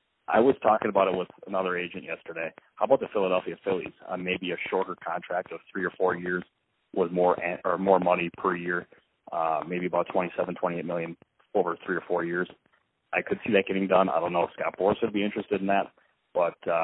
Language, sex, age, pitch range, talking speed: English, male, 30-49, 85-95 Hz, 215 wpm